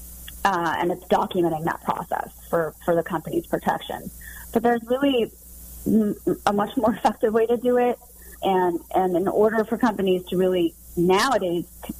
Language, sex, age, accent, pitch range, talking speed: English, female, 30-49, American, 165-215 Hz, 160 wpm